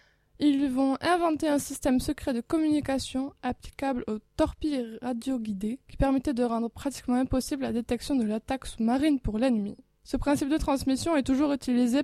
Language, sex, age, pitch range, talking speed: French, female, 20-39, 230-270 Hz, 165 wpm